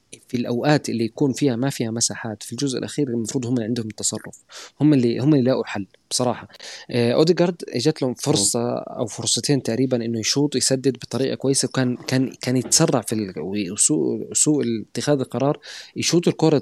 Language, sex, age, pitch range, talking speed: Arabic, male, 20-39, 110-135 Hz, 165 wpm